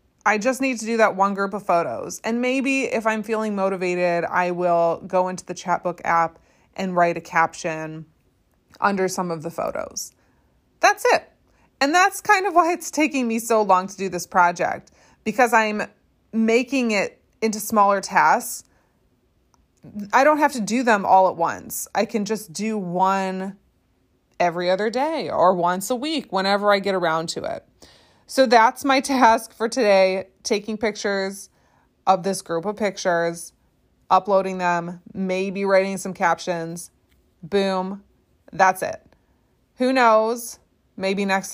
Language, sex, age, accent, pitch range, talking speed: English, female, 20-39, American, 180-225 Hz, 155 wpm